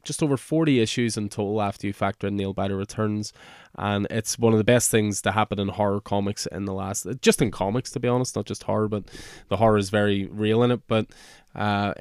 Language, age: English, 20-39